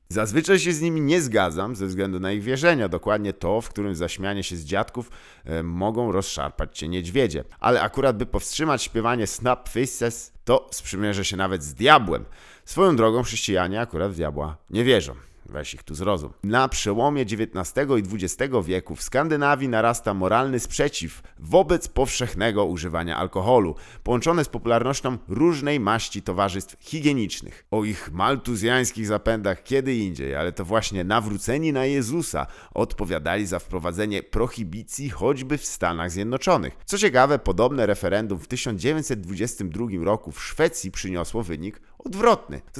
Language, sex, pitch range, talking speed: Polish, male, 95-130 Hz, 145 wpm